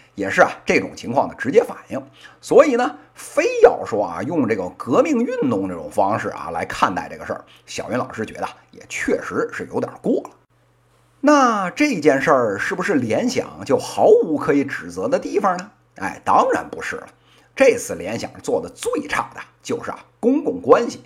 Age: 50-69